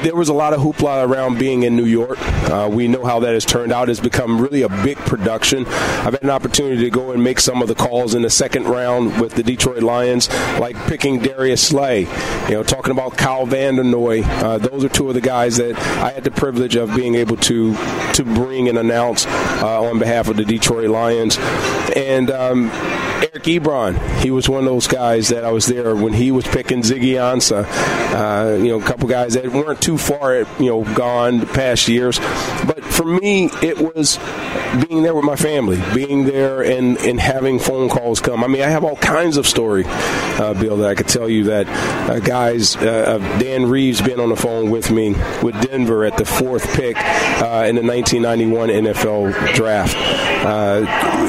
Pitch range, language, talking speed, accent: 115-130 Hz, English, 200 wpm, American